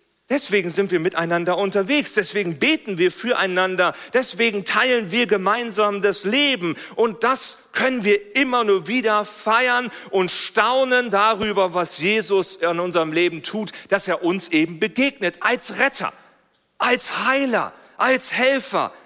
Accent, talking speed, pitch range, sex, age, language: German, 135 wpm, 195-275 Hz, male, 40-59, German